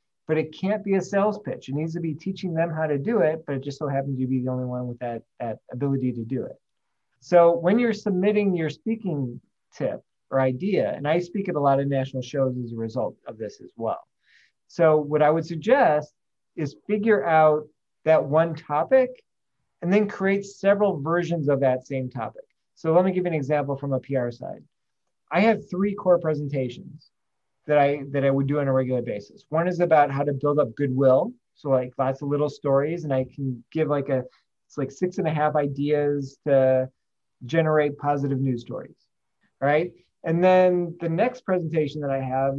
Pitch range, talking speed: 130-170 Hz, 205 wpm